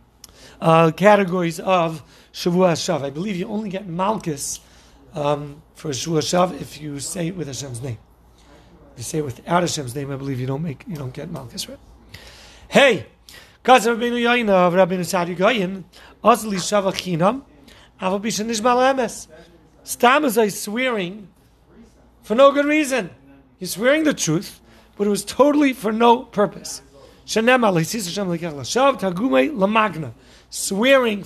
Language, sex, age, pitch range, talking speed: English, male, 40-59, 155-215 Hz, 115 wpm